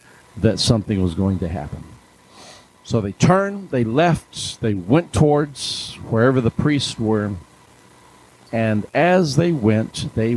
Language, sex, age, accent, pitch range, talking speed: English, male, 50-69, American, 95-135 Hz, 135 wpm